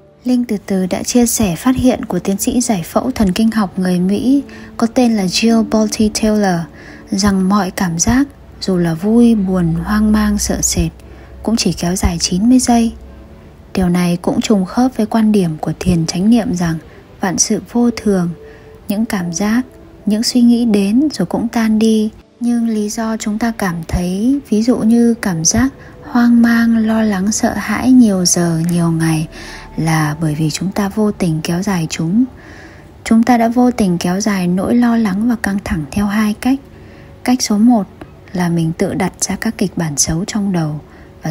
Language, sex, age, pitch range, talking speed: Vietnamese, female, 20-39, 180-225 Hz, 195 wpm